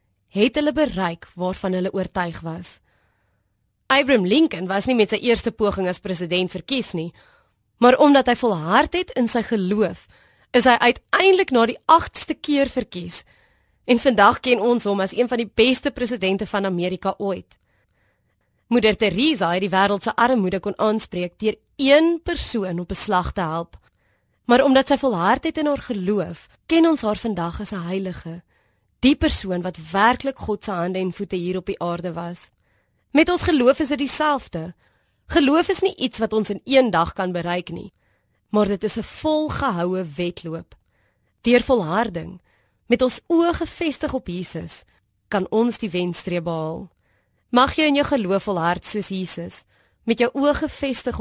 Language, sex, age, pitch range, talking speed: Dutch, female, 20-39, 175-255 Hz, 165 wpm